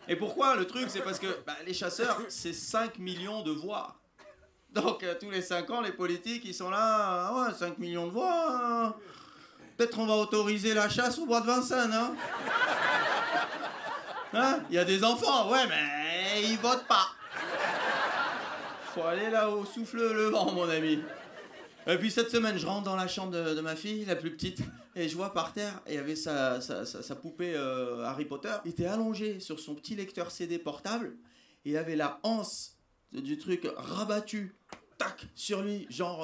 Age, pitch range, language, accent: 30-49, 175-230 Hz, French, French